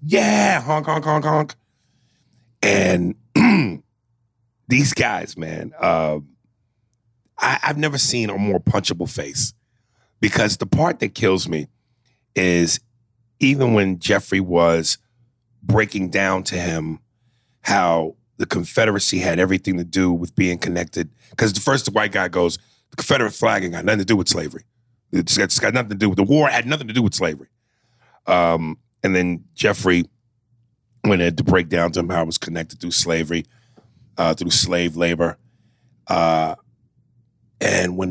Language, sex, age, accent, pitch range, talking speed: English, male, 40-59, American, 90-120 Hz, 155 wpm